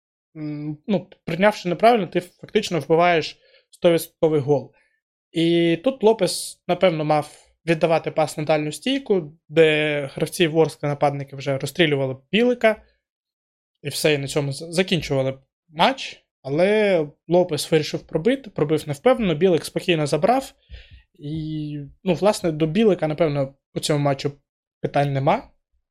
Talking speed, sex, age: 120 wpm, male, 20-39